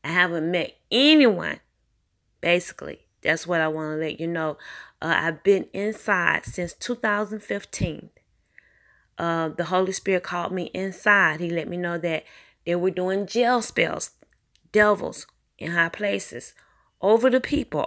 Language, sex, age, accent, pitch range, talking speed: English, female, 20-39, American, 160-195 Hz, 145 wpm